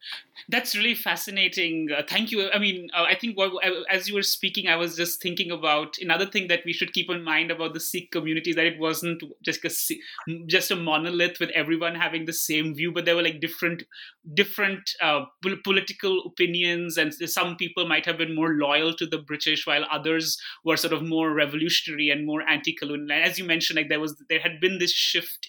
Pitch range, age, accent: 155-185 Hz, 30-49, Indian